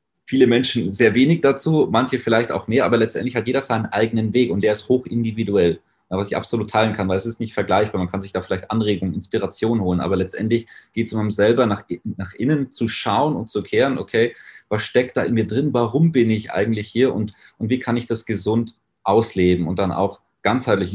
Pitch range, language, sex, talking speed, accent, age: 100-120 Hz, German, male, 225 wpm, German, 30-49